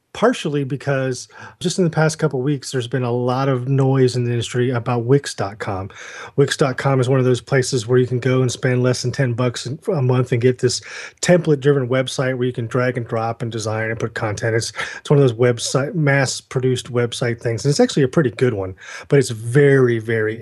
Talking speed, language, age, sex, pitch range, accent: 225 wpm, English, 30-49, male, 120-140 Hz, American